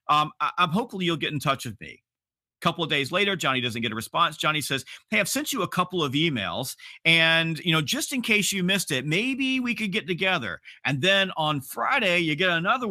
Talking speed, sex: 230 wpm, male